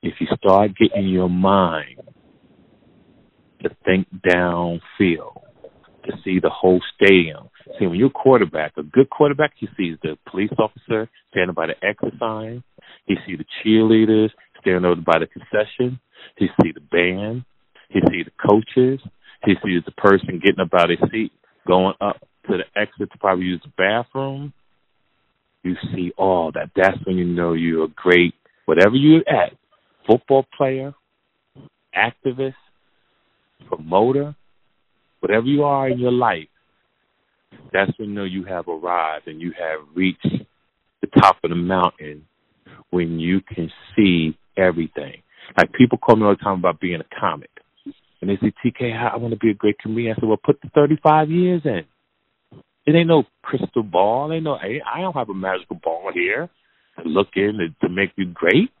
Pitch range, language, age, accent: 90-125 Hz, English, 40-59, American